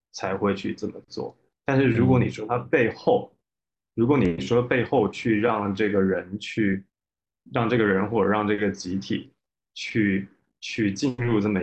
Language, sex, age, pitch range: Chinese, male, 20-39, 95-110 Hz